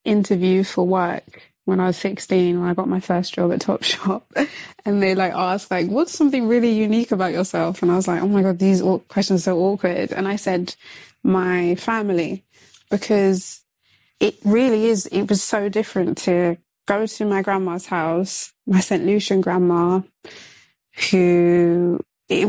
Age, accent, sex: 20-39, British, female